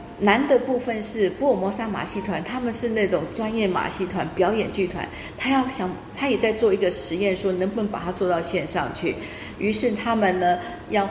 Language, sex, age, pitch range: Chinese, female, 40-59, 175-210 Hz